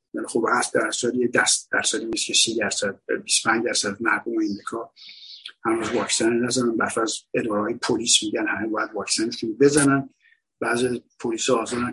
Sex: male